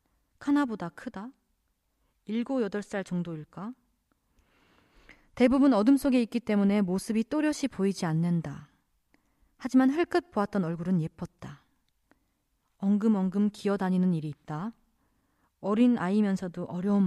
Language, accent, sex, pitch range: Korean, native, female, 175-245 Hz